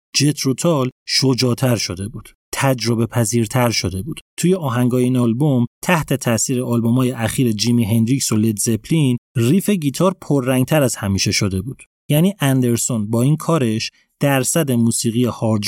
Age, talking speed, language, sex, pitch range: 30-49, 140 wpm, Persian, male, 115-160 Hz